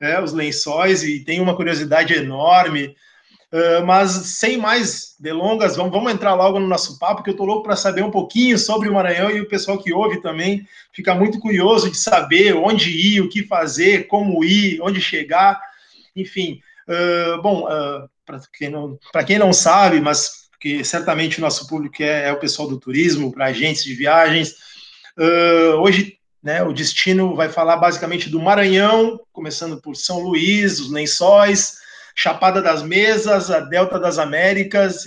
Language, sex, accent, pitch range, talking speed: Portuguese, male, Brazilian, 165-210 Hz, 160 wpm